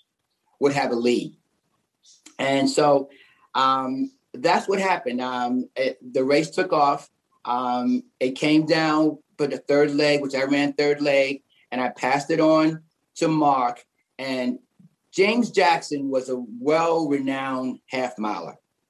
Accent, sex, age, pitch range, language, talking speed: American, male, 40-59, 130-160 Hz, English, 135 wpm